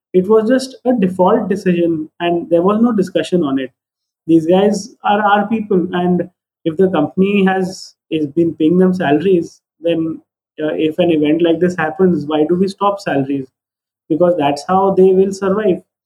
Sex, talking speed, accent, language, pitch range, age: male, 175 wpm, native, Hindi, 160-195 Hz, 20-39